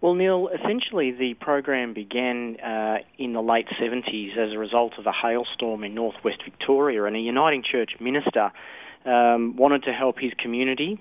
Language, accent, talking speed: English, Australian, 170 wpm